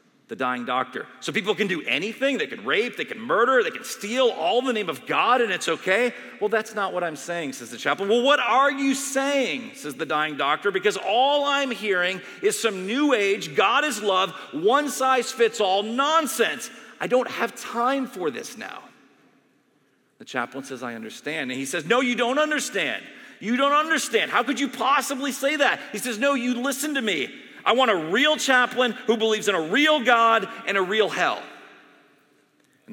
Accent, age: American, 40-59